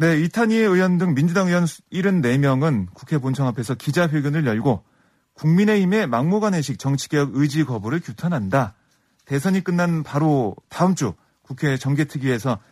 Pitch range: 130-175 Hz